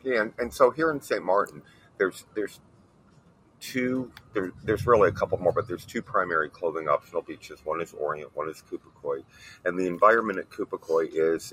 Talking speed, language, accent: 185 wpm, English, American